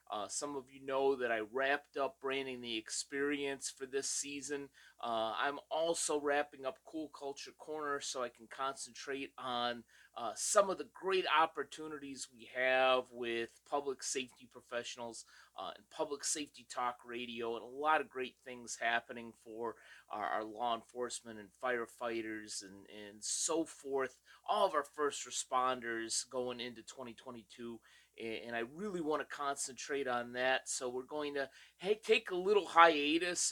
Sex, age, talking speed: male, 30-49, 160 wpm